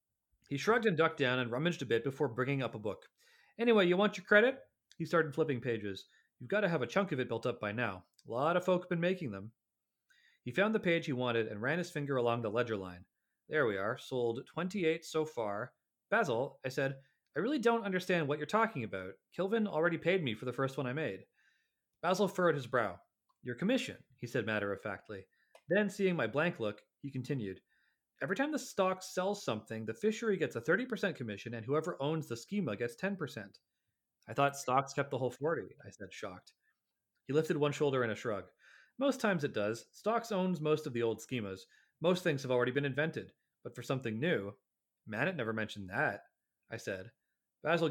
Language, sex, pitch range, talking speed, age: English, male, 120-180 Hz, 205 wpm, 30-49